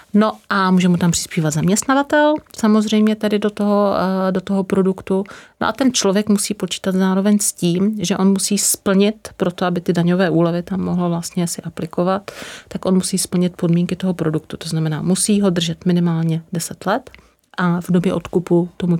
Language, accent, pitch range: Czech, native, 165-190 Hz